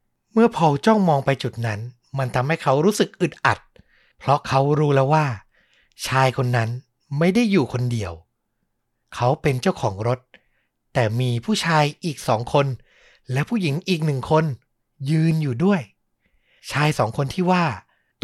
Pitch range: 130-180 Hz